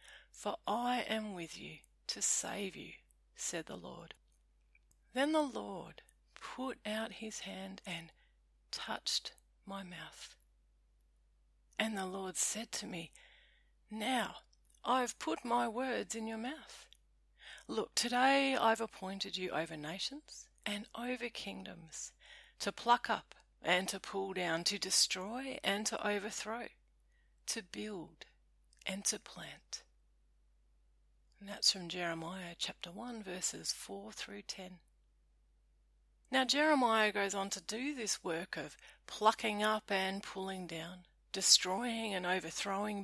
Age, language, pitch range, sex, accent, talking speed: 40-59, English, 165-225 Hz, female, Australian, 125 wpm